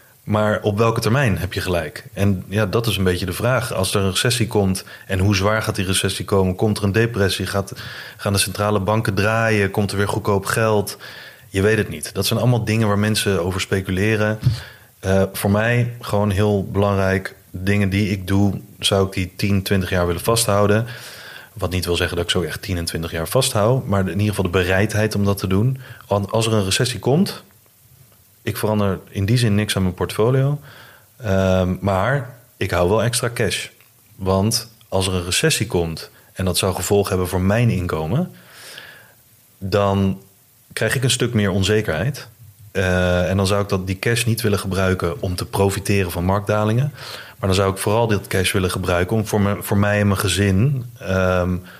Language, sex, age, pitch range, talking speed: Dutch, male, 30-49, 95-110 Hz, 200 wpm